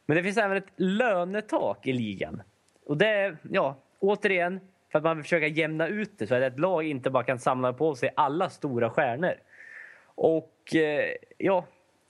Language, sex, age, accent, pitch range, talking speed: Swedish, male, 20-39, native, 145-180 Hz, 180 wpm